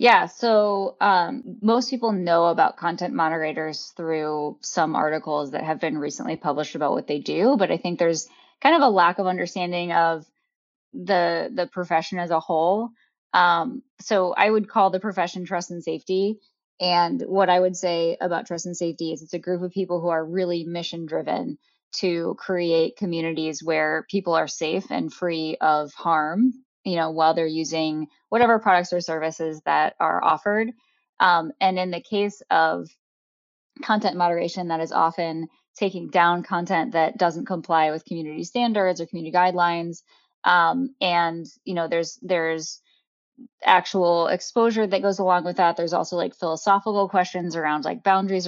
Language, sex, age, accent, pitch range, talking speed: English, female, 10-29, American, 165-195 Hz, 165 wpm